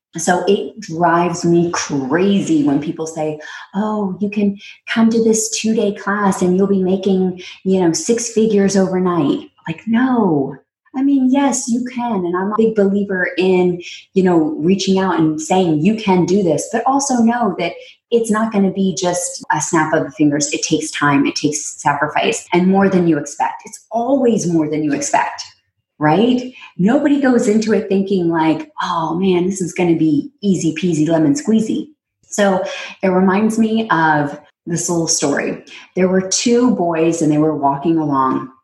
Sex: female